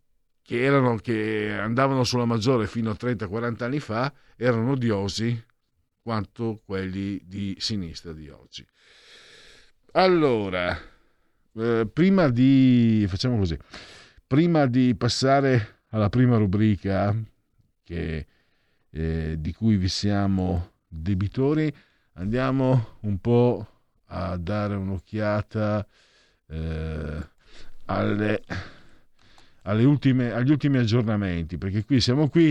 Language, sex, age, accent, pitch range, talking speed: Italian, male, 50-69, native, 90-120 Hz, 105 wpm